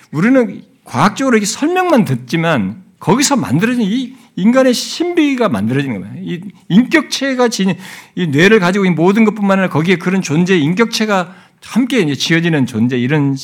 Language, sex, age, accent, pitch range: Korean, male, 60-79, native, 165-235 Hz